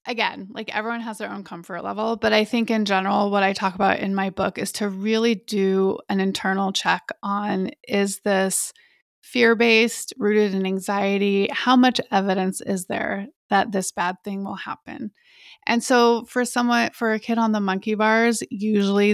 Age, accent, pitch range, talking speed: 20-39, American, 195-230 Hz, 180 wpm